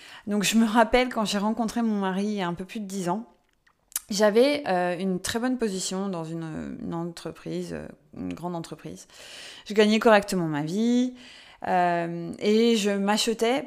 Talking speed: 175 wpm